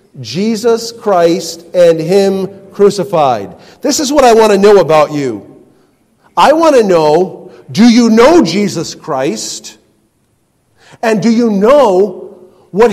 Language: English